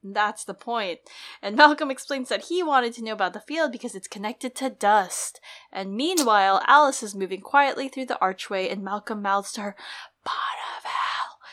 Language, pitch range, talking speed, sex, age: English, 190-255 Hz, 175 wpm, female, 10-29